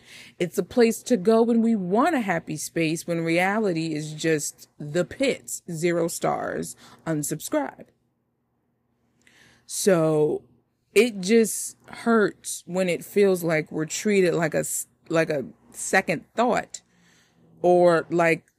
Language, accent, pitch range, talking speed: English, American, 155-215 Hz, 125 wpm